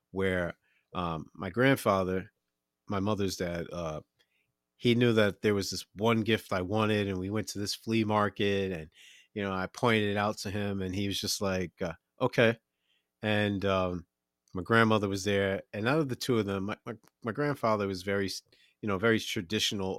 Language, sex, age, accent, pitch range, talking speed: English, male, 30-49, American, 95-110 Hz, 190 wpm